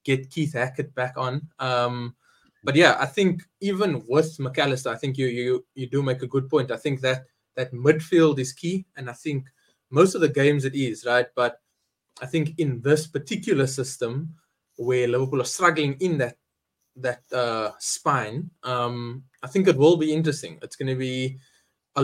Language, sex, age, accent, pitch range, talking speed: English, male, 20-39, South African, 130-155 Hz, 185 wpm